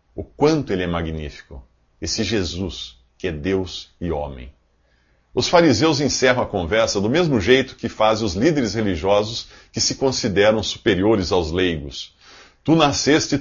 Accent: Brazilian